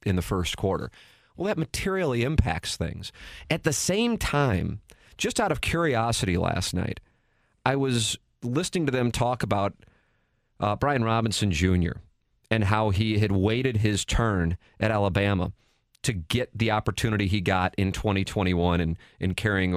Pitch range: 100-130 Hz